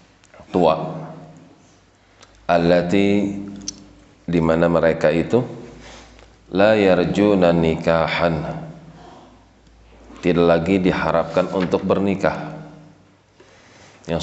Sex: male